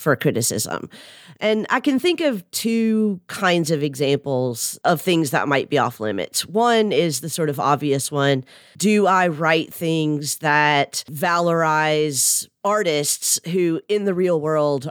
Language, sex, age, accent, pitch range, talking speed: English, female, 30-49, American, 145-185 Hz, 150 wpm